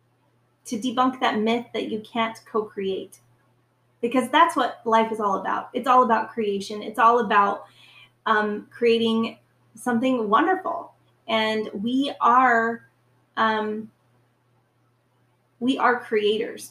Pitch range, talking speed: 205-240 Hz, 120 wpm